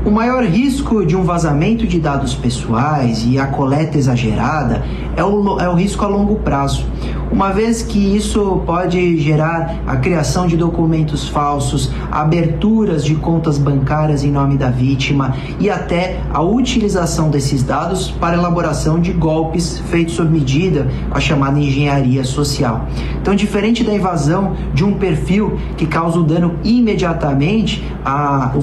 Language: Portuguese